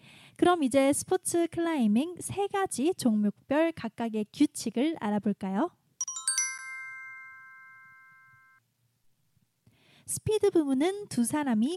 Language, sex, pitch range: Korean, female, 215-320 Hz